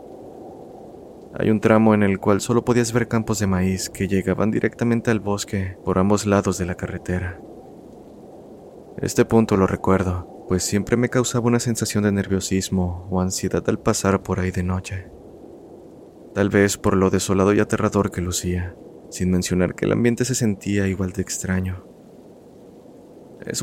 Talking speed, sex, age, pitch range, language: 160 wpm, male, 30-49, 95-105 Hz, Spanish